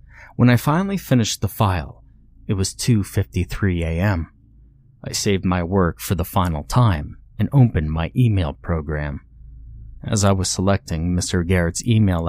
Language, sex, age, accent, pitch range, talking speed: English, male, 30-49, American, 90-115 Hz, 145 wpm